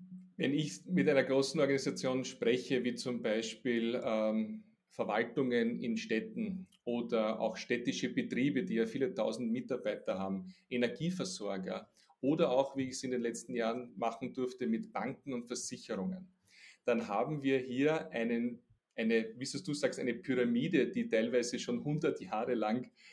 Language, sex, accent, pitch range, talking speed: German, male, Austrian, 125-175 Hz, 150 wpm